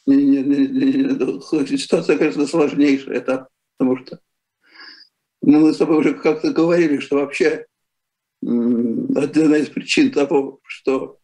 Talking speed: 100 wpm